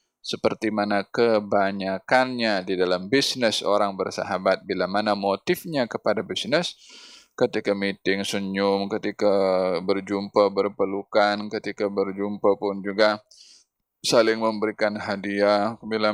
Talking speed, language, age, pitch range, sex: 100 wpm, Malay, 20-39, 105-125 Hz, male